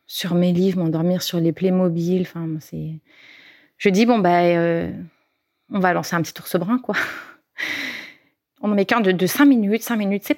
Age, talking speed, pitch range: 30-49, 195 wpm, 180-225 Hz